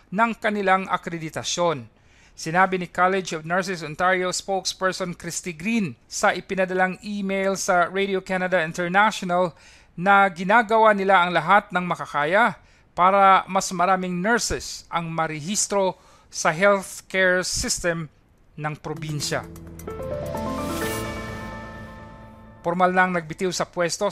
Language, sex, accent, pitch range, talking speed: Filipino, male, native, 170-195 Hz, 105 wpm